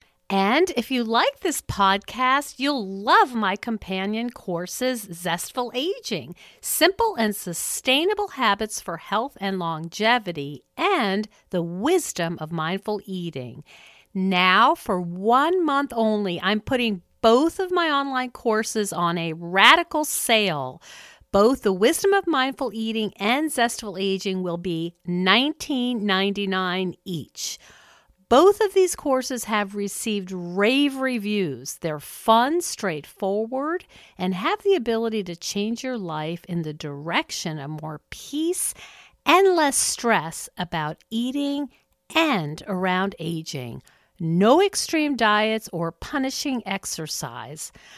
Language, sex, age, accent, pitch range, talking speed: English, female, 50-69, American, 175-260 Hz, 120 wpm